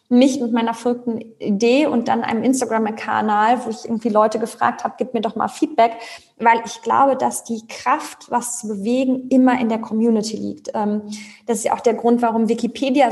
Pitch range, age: 220-250 Hz, 20-39